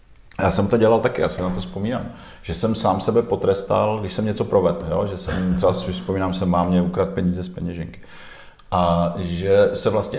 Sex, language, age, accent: male, Czech, 40-59, native